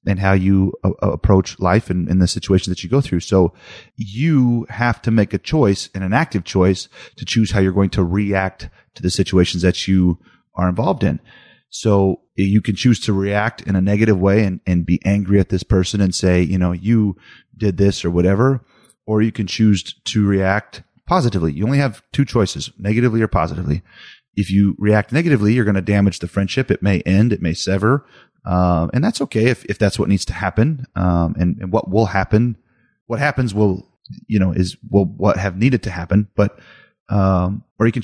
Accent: American